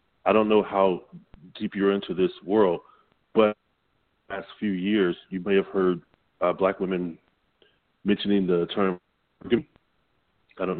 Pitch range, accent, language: 90-105 Hz, American, English